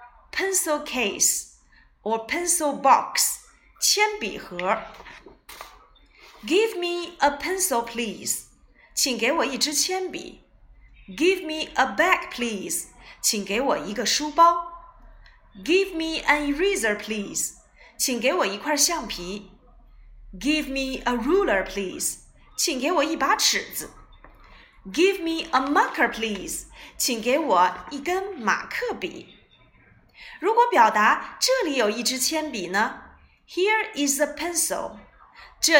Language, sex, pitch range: Chinese, female, 255-355 Hz